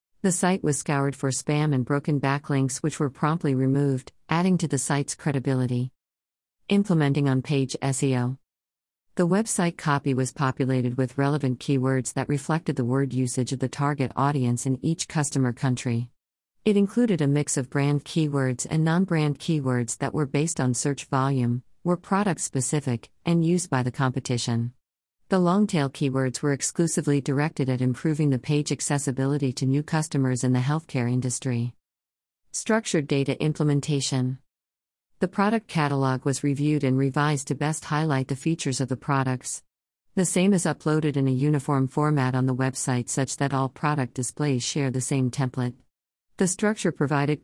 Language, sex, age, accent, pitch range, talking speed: English, female, 50-69, American, 130-155 Hz, 155 wpm